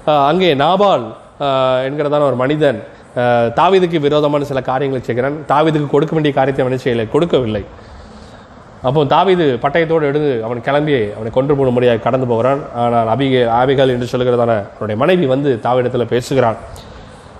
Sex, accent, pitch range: male, native, 125-175 Hz